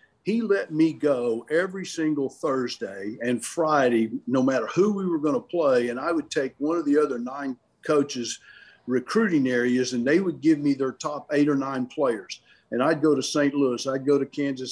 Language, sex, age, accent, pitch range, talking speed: English, male, 50-69, American, 135-165 Hz, 205 wpm